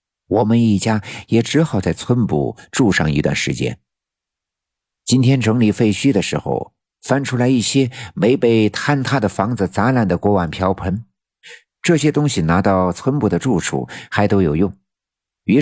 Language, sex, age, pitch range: Chinese, male, 50-69, 90-115 Hz